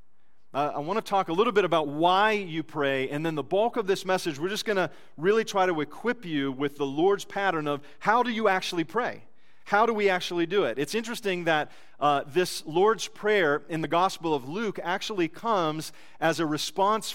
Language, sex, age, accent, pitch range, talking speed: English, male, 40-59, American, 170-230 Hz, 215 wpm